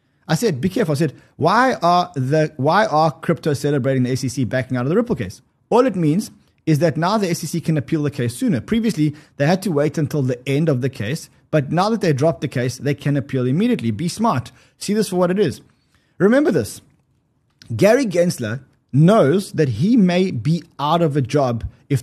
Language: English